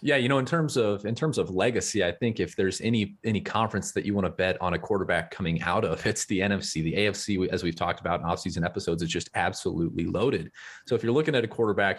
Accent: American